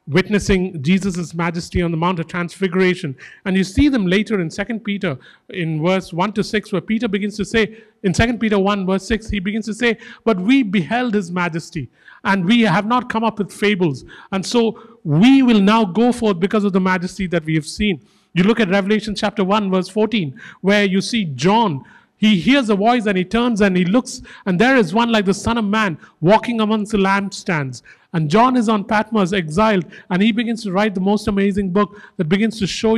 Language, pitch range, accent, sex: English, 185-220 Hz, Indian, male